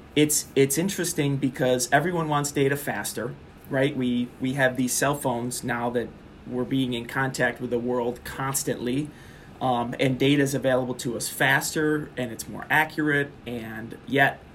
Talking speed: 160 wpm